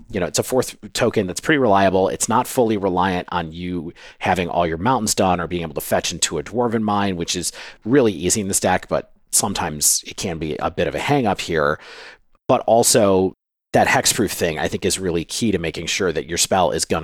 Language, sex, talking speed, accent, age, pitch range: English, male, 230 wpm, American, 40-59, 90-115 Hz